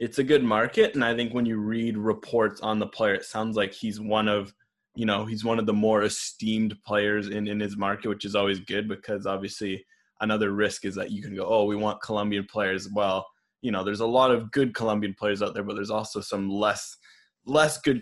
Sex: male